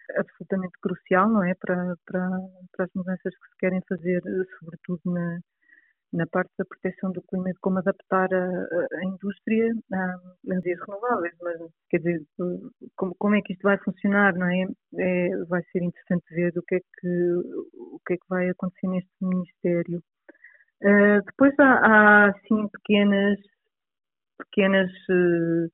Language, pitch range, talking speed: Portuguese, 180-195 Hz, 155 wpm